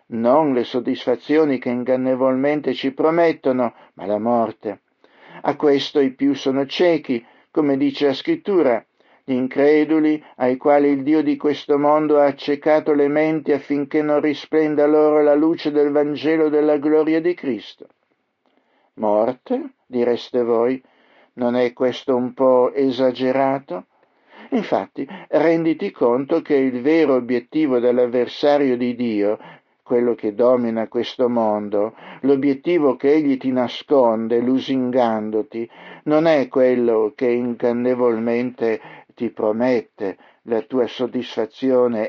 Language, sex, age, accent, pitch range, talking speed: Italian, male, 60-79, native, 120-150 Hz, 120 wpm